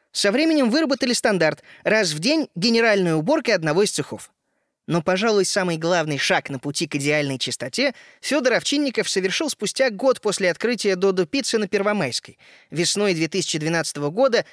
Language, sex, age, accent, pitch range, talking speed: Russian, male, 20-39, native, 160-235 Hz, 155 wpm